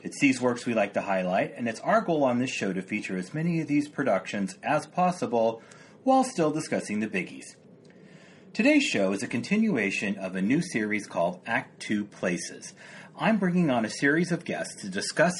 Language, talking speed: English, 195 wpm